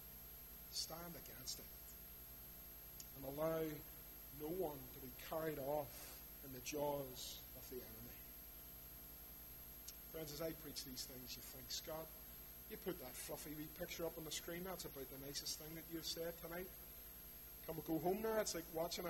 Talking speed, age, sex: 165 wpm, 30-49, male